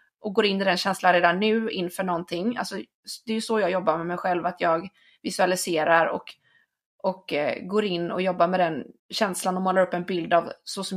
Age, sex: 20-39, female